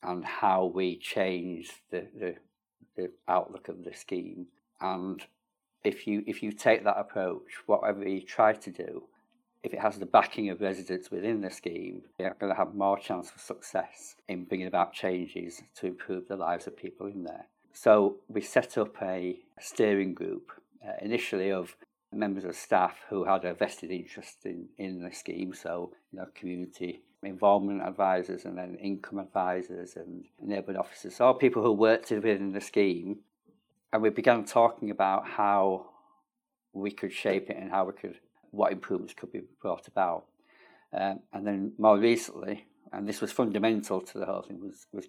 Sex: male